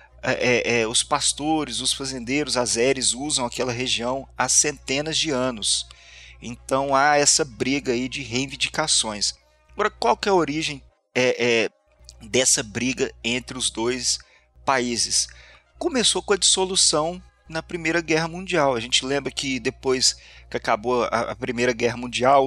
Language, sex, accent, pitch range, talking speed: Portuguese, male, Brazilian, 120-155 Hz, 150 wpm